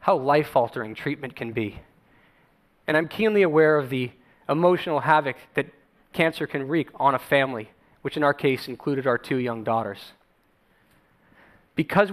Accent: American